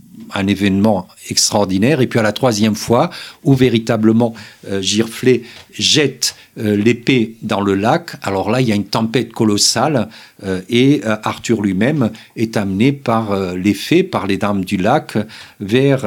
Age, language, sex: 50-69, French, male